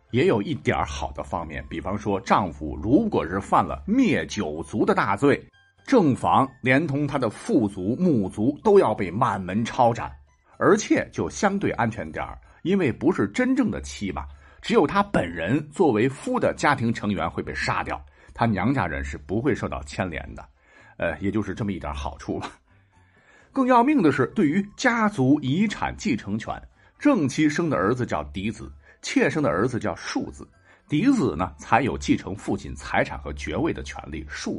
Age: 50-69